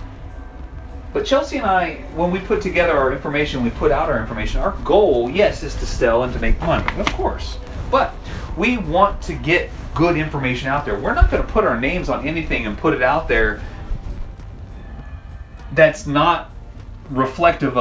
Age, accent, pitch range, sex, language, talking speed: 30-49, American, 90-150 Hz, male, English, 175 wpm